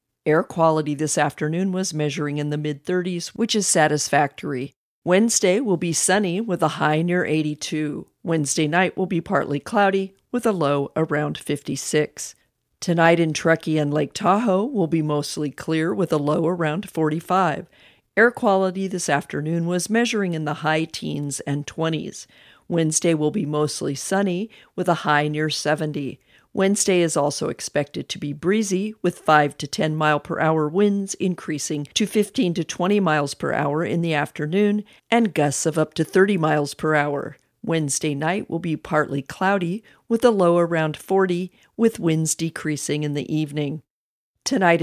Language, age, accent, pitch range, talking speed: English, 50-69, American, 150-185 Hz, 165 wpm